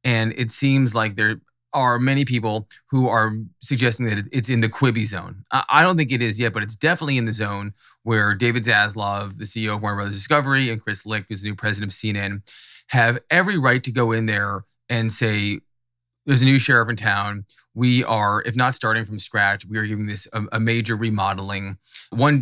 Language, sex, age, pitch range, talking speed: English, male, 20-39, 105-125 Hz, 210 wpm